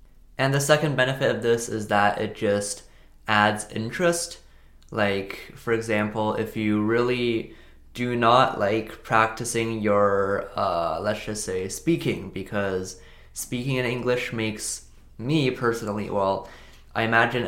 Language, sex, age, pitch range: Chinese, male, 20-39, 105-125 Hz